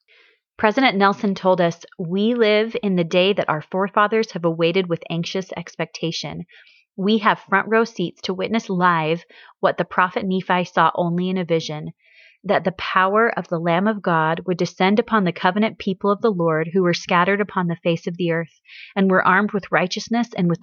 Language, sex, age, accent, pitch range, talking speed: English, female, 30-49, American, 170-210 Hz, 195 wpm